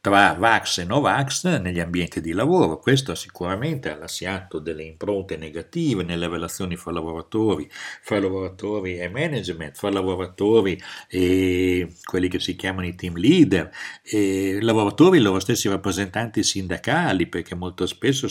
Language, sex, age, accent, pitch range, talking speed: Italian, male, 50-69, native, 85-105 Hz, 140 wpm